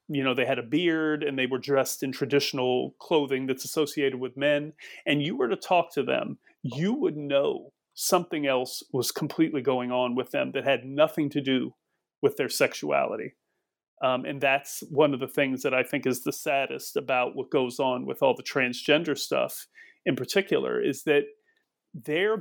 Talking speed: 185 wpm